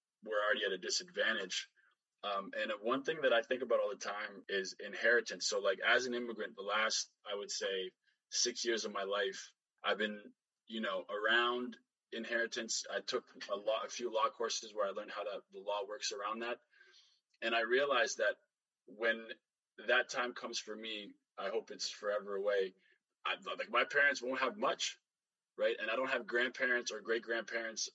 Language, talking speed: English, 190 wpm